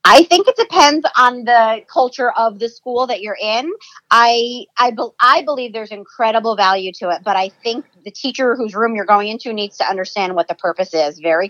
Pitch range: 200-245 Hz